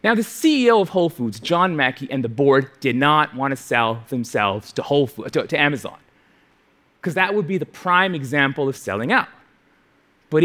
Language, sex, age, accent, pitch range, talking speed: English, male, 30-49, American, 130-185 Hz, 195 wpm